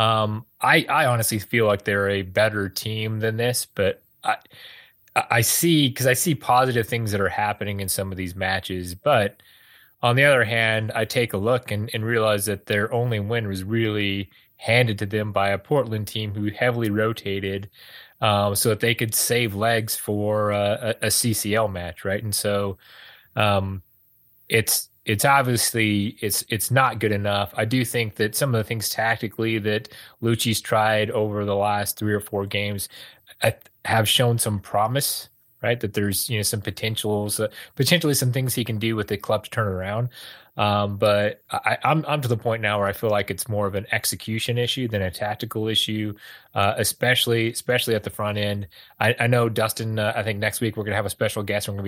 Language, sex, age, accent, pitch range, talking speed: English, male, 30-49, American, 105-115 Hz, 200 wpm